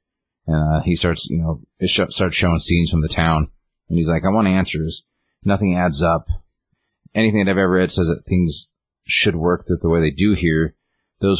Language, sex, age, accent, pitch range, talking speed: English, male, 30-49, American, 80-90 Hz, 195 wpm